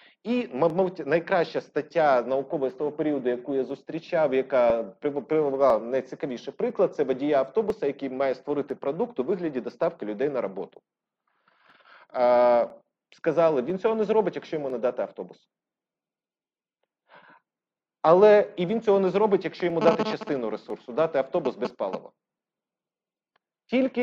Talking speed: 130 wpm